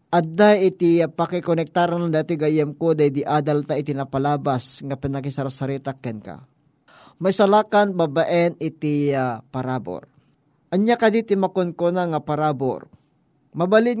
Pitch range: 145-185 Hz